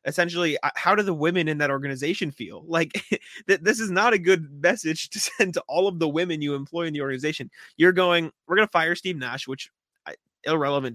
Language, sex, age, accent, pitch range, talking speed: English, male, 20-39, American, 130-170 Hz, 210 wpm